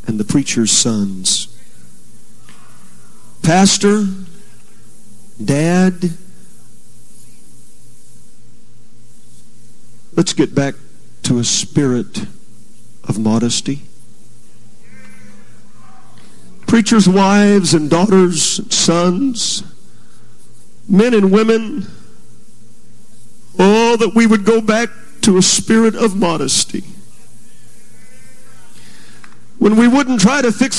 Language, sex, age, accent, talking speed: English, male, 50-69, American, 80 wpm